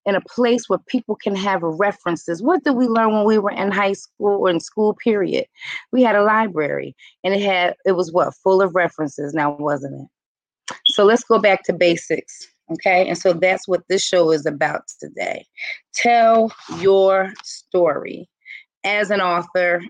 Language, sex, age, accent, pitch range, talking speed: English, female, 30-49, American, 170-215 Hz, 180 wpm